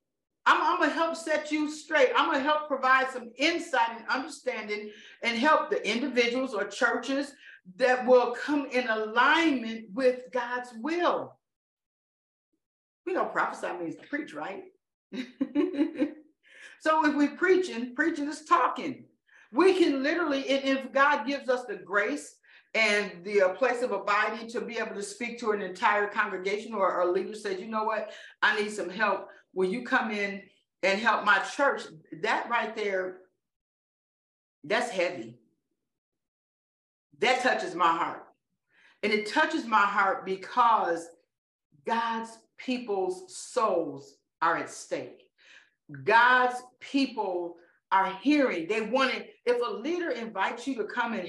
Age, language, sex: 50-69, English, female